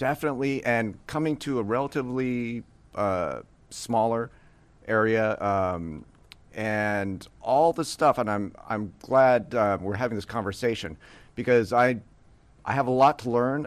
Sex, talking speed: male, 135 wpm